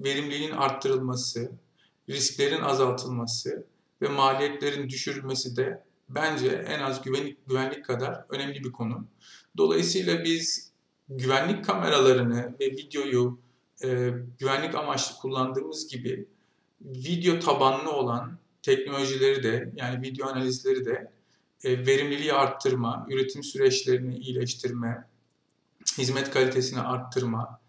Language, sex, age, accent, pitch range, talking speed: Turkish, male, 50-69, native, 125-145 Hz, 100 wpm